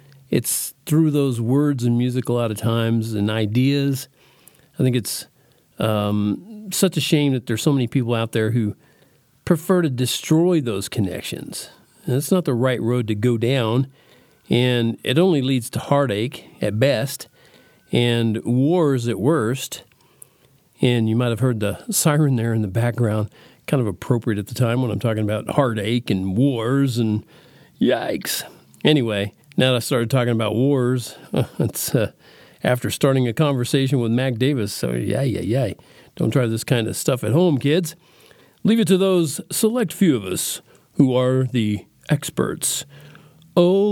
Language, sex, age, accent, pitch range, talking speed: English, male, 50-69, American, 115-155 Hz, 165 wpm